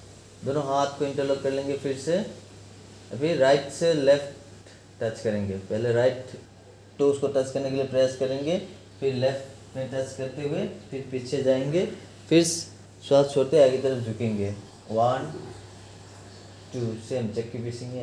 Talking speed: 145 wpm